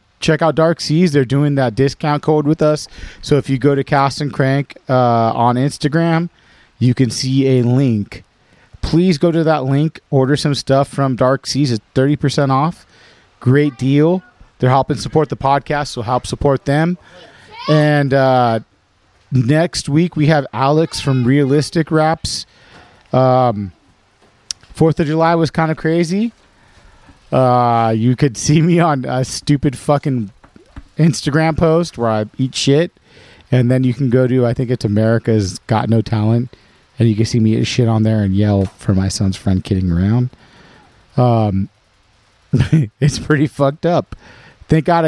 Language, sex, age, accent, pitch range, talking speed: English, male, 30-49, American, 115-150 Hz, 160 wpm